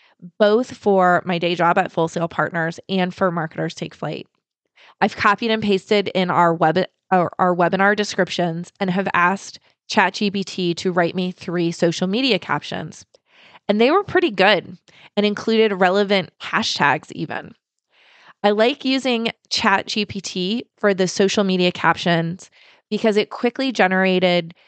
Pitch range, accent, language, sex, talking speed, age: 175-205 Hz, American, English, female, 140 wpm, 20-39